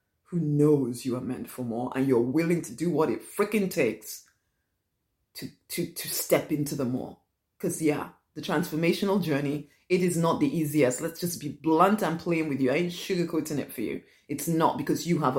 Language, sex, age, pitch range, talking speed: English, female, 30-49, 155-200 Hz, 205 wpm